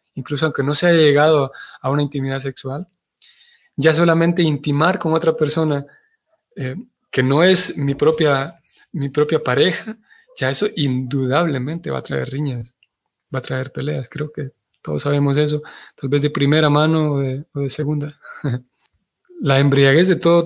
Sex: male